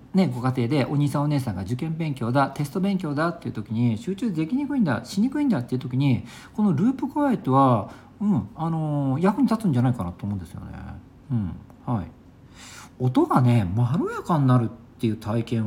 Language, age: Japanese, 50-69